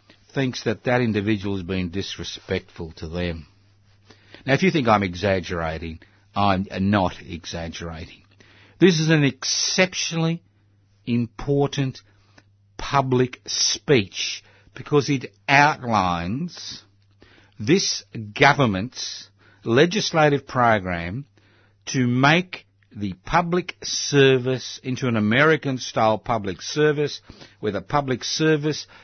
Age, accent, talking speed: 60-79, Australian, 95 wpm